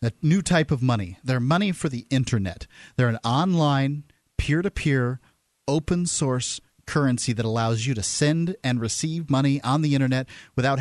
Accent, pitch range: American, 125-175 Hz